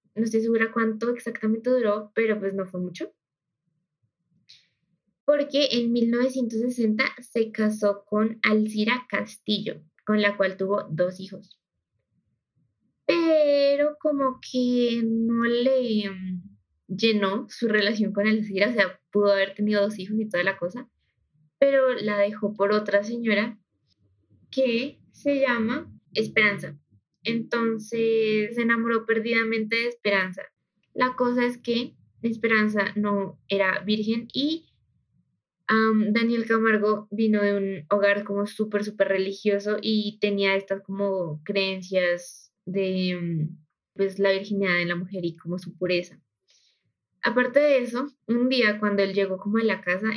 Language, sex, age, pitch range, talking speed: Spanish, female, 20-39, 195-230 Hz, 130 wpm